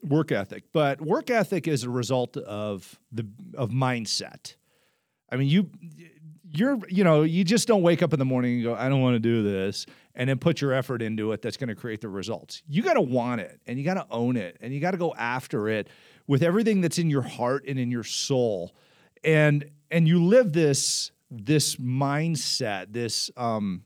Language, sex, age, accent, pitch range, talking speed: English, male, 40-59, American, 120-165 Hz, 210 wpm